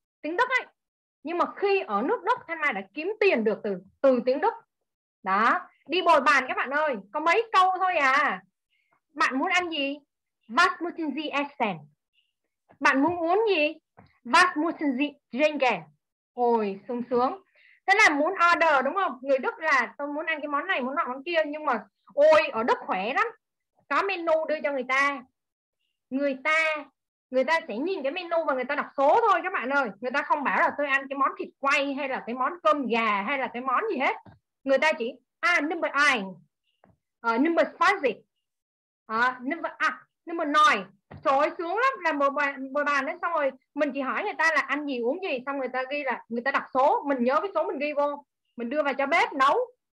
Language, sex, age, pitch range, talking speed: Vietnamese, female, 20-39, 265-335 Hz, 210 wpm